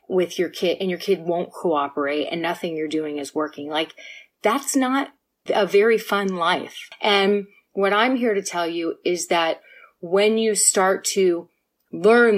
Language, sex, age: English, female, 30-49